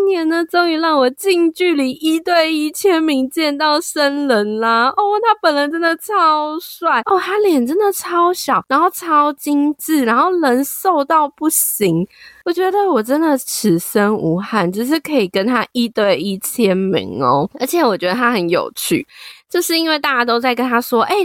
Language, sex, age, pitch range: Chinese, female, 20-39, 215-345 Hz